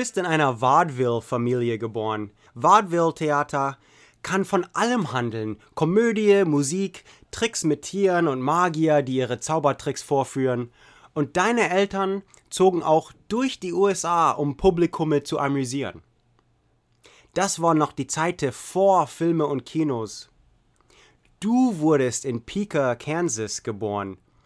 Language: English